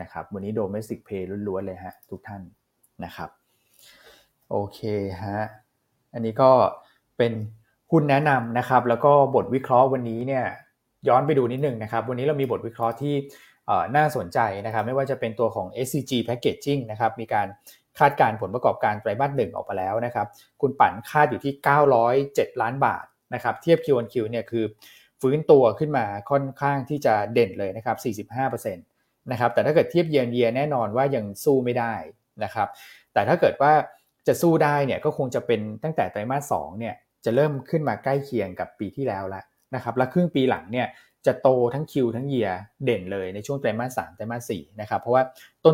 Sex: male